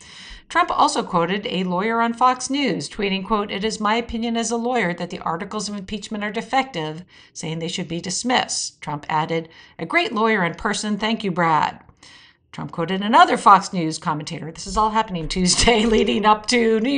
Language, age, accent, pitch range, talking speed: English, 50-69, American, 180-245 Hz, 190 wpm